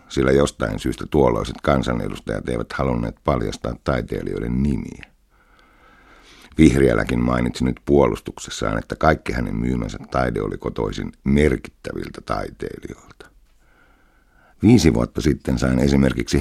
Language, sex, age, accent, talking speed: Finnish, male, 60-79, native, 100 wpm